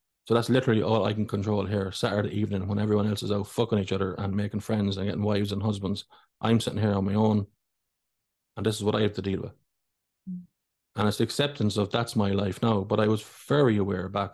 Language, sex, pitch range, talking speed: English, male, 95-110 Hz, 235 wpm